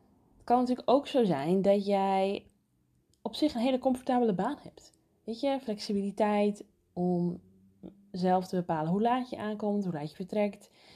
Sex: female